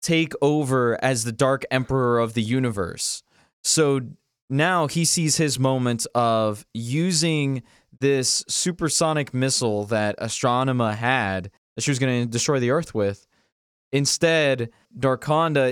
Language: English